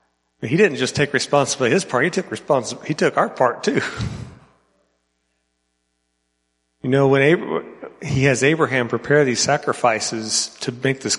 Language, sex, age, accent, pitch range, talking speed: English, male, 40-59, American, 105-130 Hz, 150 wpm